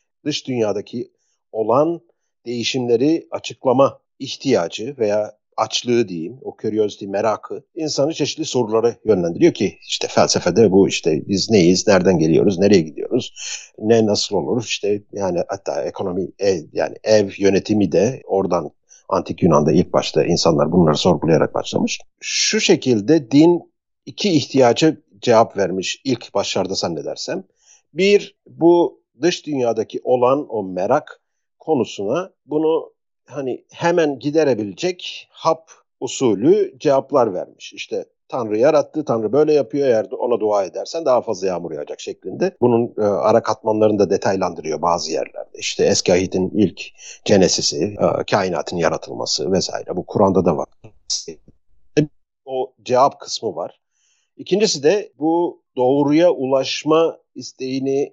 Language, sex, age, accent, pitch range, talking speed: Turkish, male, 50-69, native, 115-175 Hz, 125 wpm